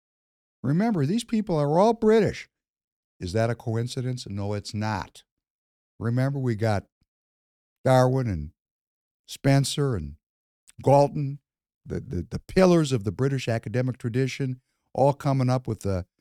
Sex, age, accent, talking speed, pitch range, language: male, 60-79, American, 130 wpm, 110-150 Hz, English